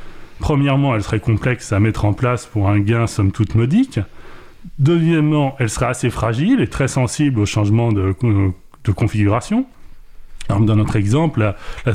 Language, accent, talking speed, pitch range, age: French, French, 165 wpm, 105-150 Hz, 30-49